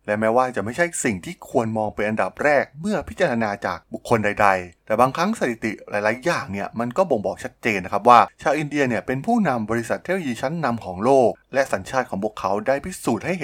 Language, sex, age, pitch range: Thai, male, 20-39, 100-135 Hz